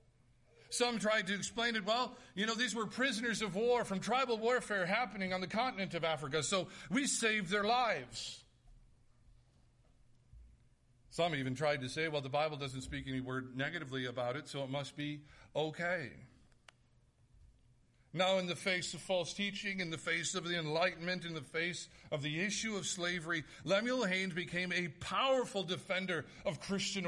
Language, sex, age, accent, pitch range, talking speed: English, male, 50-69, American, 125-195 Hz, 170 wpm